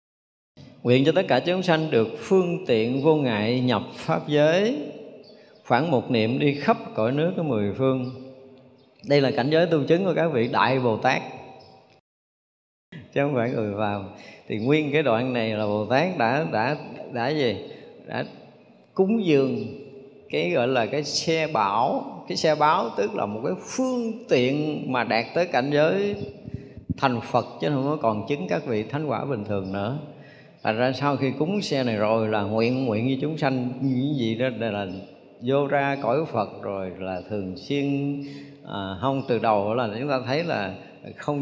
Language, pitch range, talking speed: Vietnamese, 110-145 Hz, 180 wpm